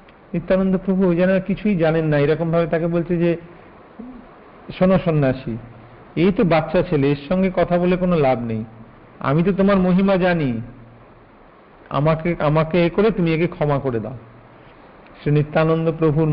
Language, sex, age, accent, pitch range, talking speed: Hindi, male, 50-69, native, 140-185 Hz, 50 wpm